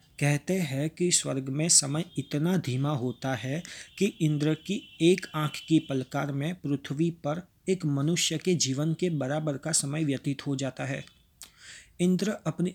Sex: male